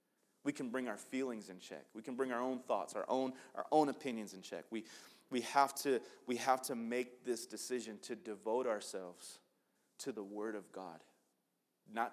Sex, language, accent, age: male, English, American, 30-49